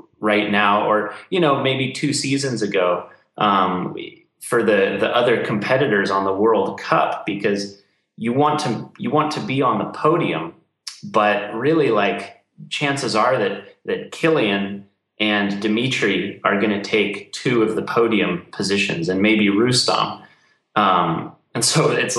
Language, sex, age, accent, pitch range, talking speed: German, male, 30-49, American, 100-125 Hz, 150 wpm